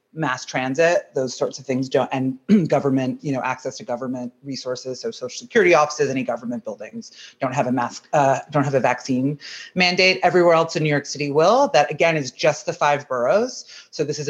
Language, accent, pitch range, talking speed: English, American, 130-155 Hz, 195 wpm